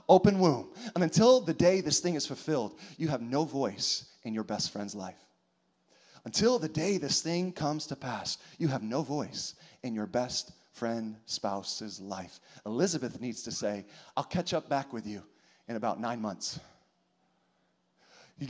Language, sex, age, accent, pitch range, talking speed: English, male, 30-49, American, 130-195 Hz, 170 wpm